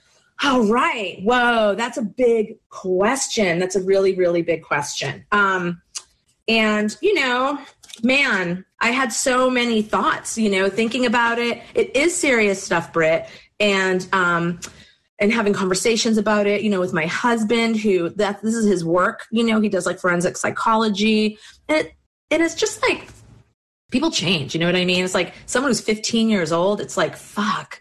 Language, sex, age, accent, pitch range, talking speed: English, female, 30-49, American, 185-235 Hz, 170 wpm